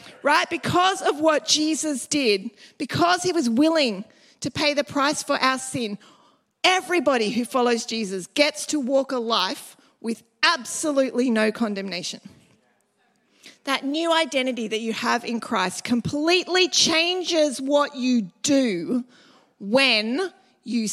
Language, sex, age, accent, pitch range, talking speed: English, female, 30-49, Australian, 235-325 Hz, 130 wpm